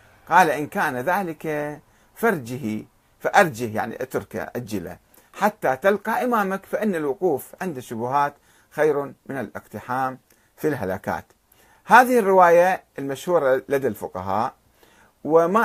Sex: male